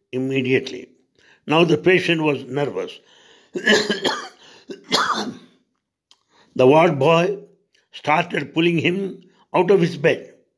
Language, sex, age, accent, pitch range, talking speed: English, male, 60-79, Indian, 135-180 Hz, 90 wpm